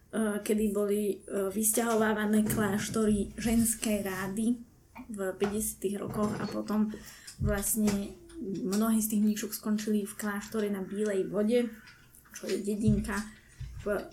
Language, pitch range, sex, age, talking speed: Slovak, 210-235 Hz, female, 20-39, 105 wpm